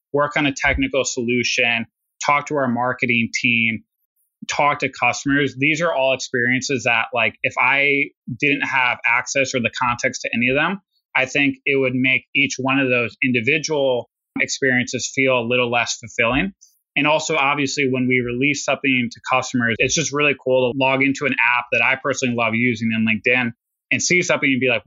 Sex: male